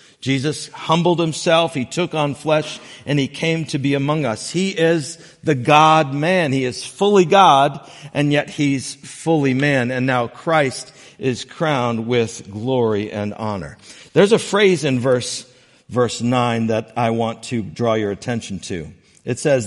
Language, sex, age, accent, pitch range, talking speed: English, male, 50-69, American, 125-155 Hz, 160 wpm